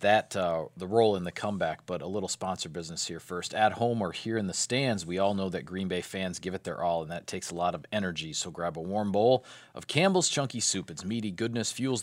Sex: male